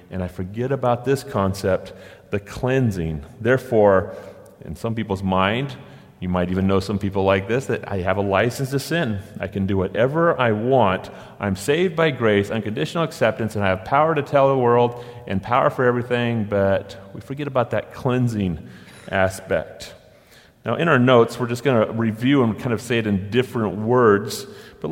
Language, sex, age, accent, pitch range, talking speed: English, male, 30-49, American, 100-135 Hz, 185 wpm